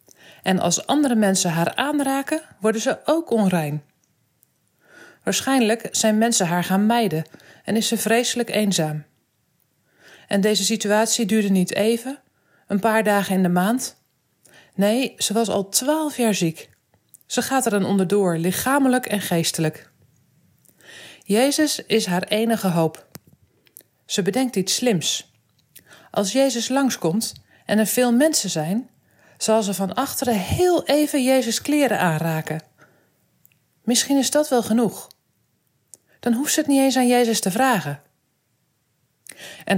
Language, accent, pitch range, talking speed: Dutch, Dutch, 185-250 Hz, 135 wpm